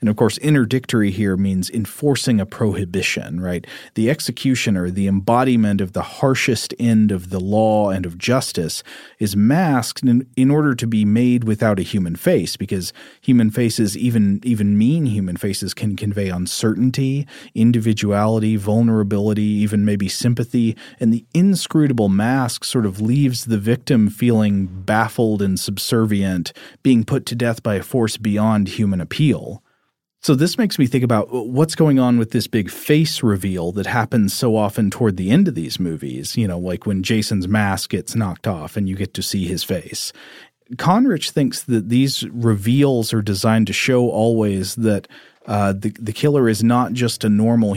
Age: 30-49